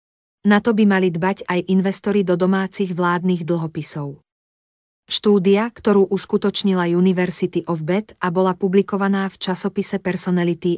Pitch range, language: 175-195 Hz, Slovak